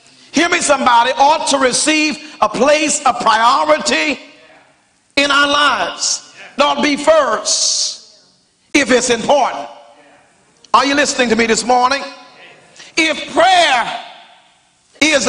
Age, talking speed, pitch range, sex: 50-69, 115 wpm, 270-325 Hz, male